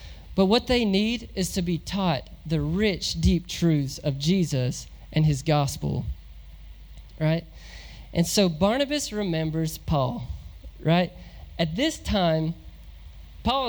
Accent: American